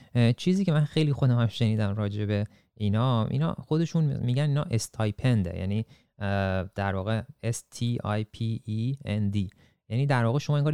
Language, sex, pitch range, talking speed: Persian, male, 100-130 Hz, 130 wpm